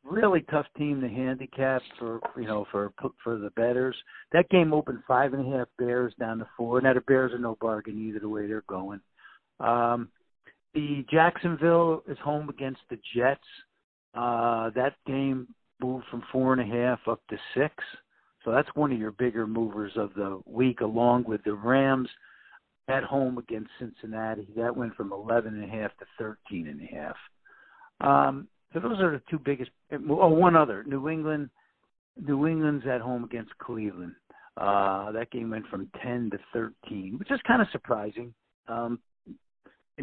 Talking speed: 175 wpm